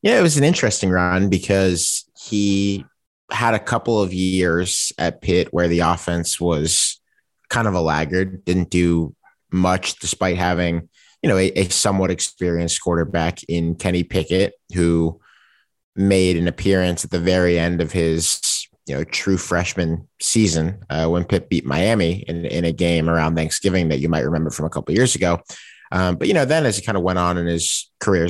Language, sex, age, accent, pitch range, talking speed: English, male, 30-49, American, 85-95 Hz, 185 wpm